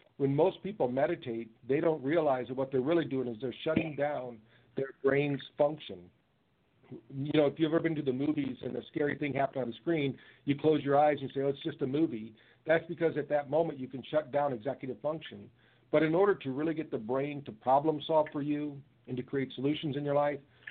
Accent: American